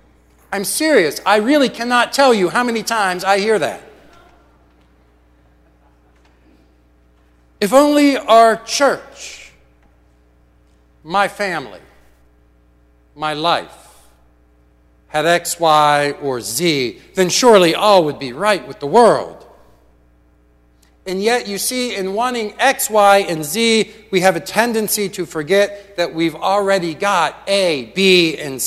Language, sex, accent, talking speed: English, male, American, 120 wpm